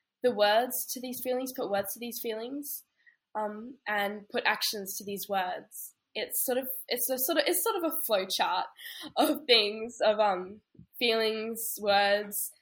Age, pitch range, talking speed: 10-29, 190-240 Hz, 170 wpm